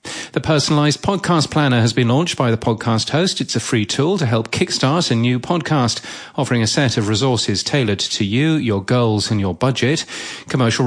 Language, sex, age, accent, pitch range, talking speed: English, male, 40-59, British, 115-155 Hz, 195 wpm